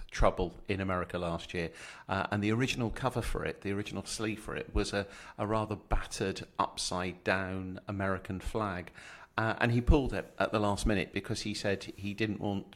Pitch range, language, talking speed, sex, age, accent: 90-100 Hz, English, 195 wpm, male, 50-69, British